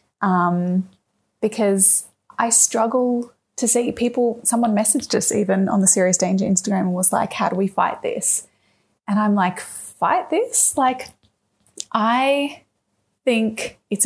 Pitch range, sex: 185-230 Hz, female